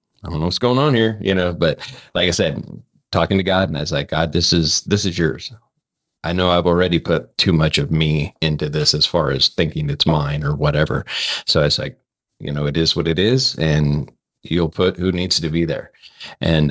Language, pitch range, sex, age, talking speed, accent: English, 80-90 Hz, male, 30-49, 235 wpm, American